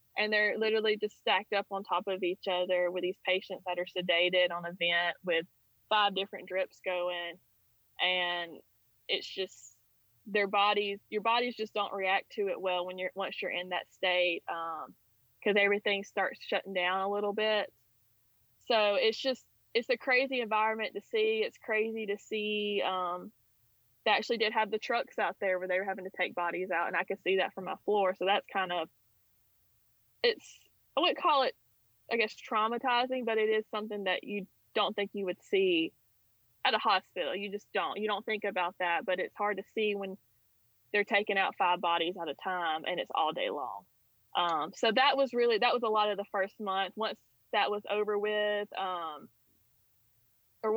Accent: American